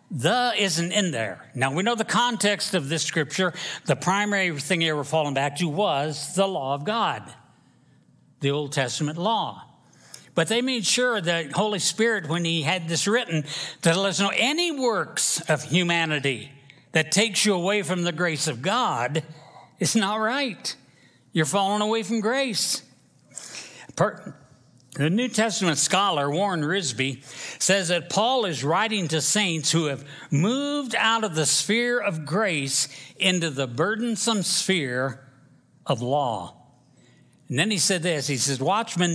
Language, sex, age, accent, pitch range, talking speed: English, male, 60-79, American, 140-200 Hz, 160 wpm